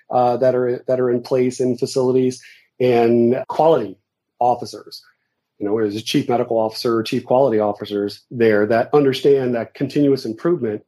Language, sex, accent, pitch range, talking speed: English, male, American, 115-130 Hz, 155 wpm